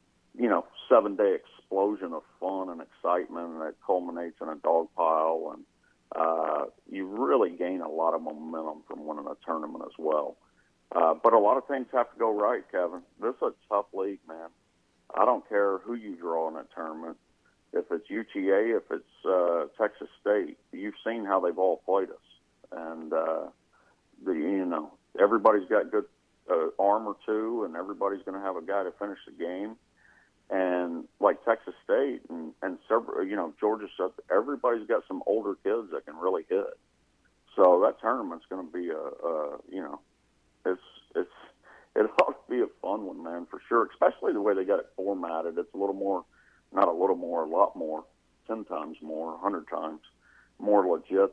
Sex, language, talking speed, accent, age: male, English, 185 wpm, American, 50-69